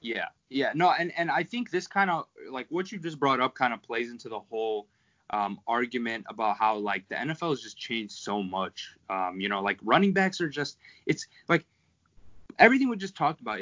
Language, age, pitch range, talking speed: English, 20-39, 105-140 Hz, 215 wpm